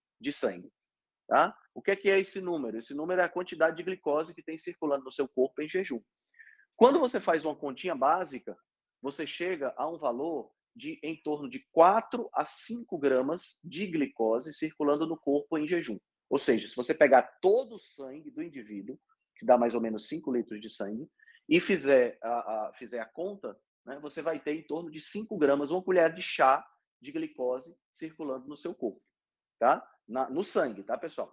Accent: Brazilian